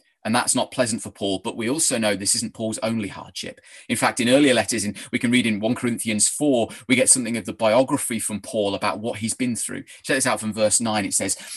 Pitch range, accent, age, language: 105-125 Hz, British, 30-49, English